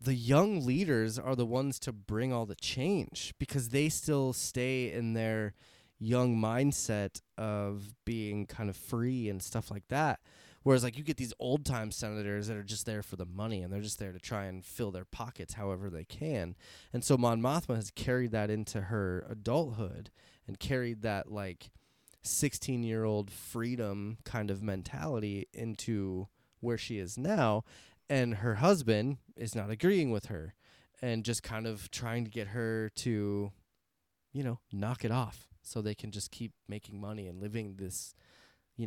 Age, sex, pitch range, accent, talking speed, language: 20-39, male, 100-125 Hz, American, 180 wpm, English